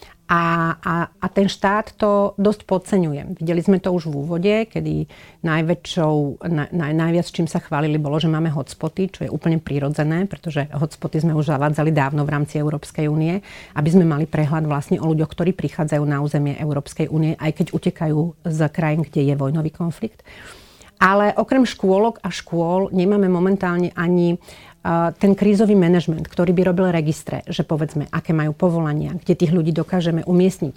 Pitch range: 160-190 Hz